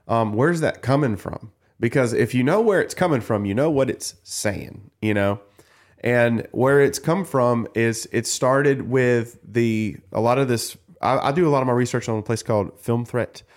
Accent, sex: American, male